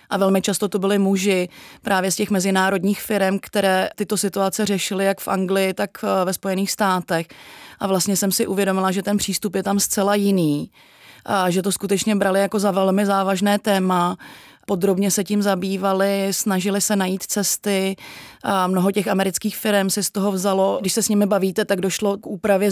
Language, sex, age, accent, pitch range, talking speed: Czech, female, 30-49, native, 190-205 Hz, 185 wpm